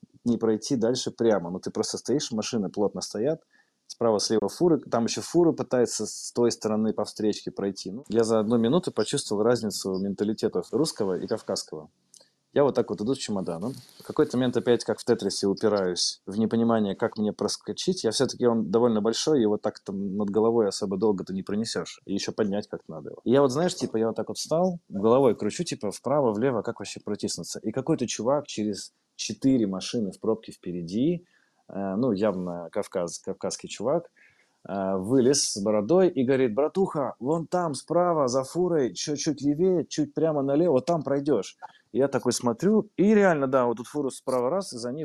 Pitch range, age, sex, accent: 105-140 Hz, 20-39, male, native